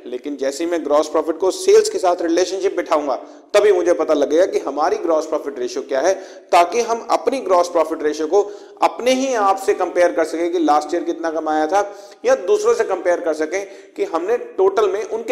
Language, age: Hindi, 40-59